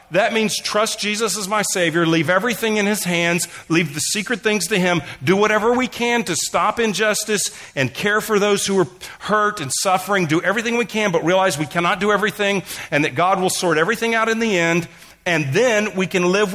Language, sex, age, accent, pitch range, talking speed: English, male, 40-59, American, 160-210 Hz, 215 wpm